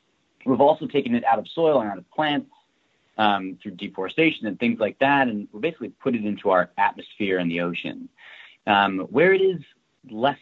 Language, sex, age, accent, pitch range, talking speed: English, male, 30-49, American, 95-145 Hz, 195 wpm